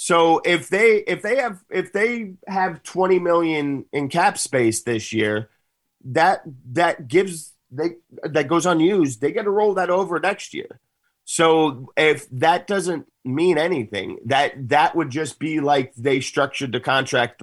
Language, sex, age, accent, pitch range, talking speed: English, male, 30-49, American, 120-165 Hz, 160 wpm